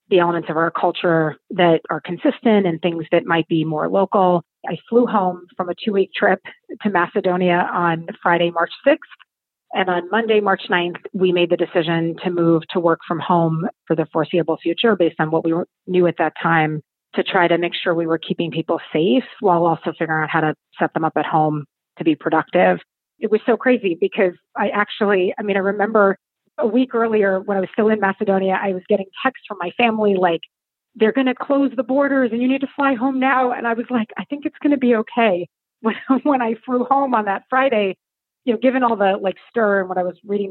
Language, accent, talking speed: English, American, 225 wpm